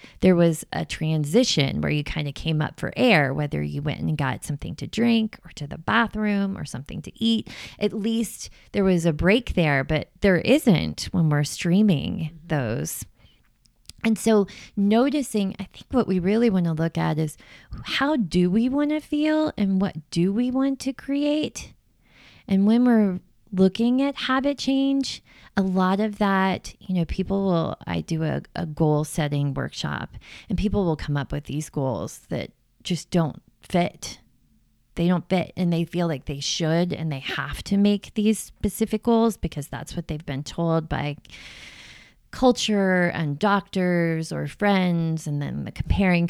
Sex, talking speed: female, 175 wpm